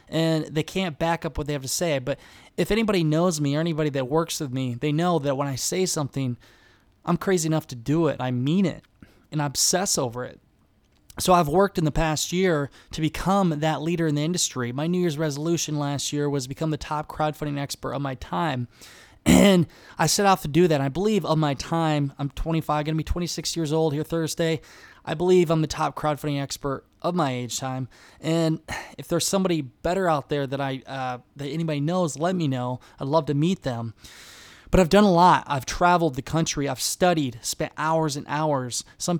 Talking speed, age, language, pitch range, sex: 215 wpm, 20-39, English, 140-170 Hz, male